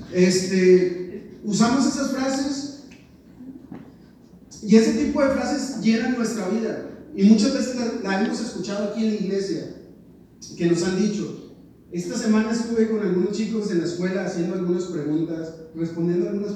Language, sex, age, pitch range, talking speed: Spanish, male, 40-59, 180-230 Hz, 145 wpm